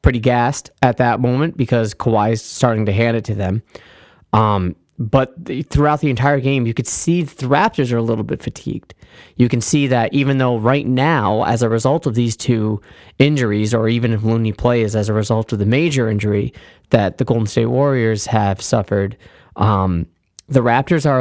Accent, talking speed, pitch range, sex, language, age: American, 195 wpm, 105-130 Hz, male, English, 20-39